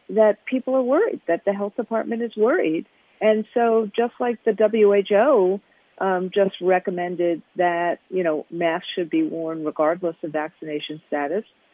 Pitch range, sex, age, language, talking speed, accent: 175-235 Hz, female, 50-69, English, 155 wpm, American